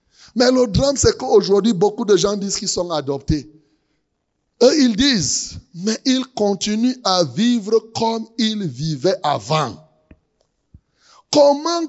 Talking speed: 125 wpm